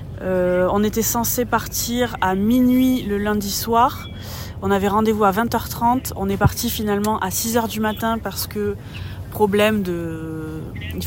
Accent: French